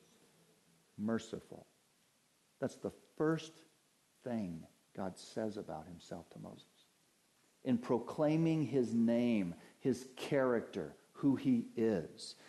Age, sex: 50-69, male